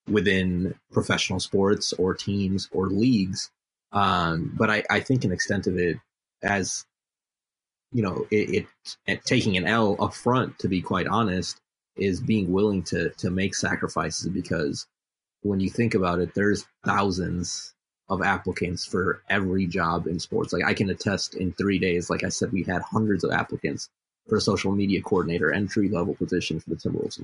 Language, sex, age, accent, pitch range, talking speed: English, male, 30-49, American, 90-100 Hz, 175 wpm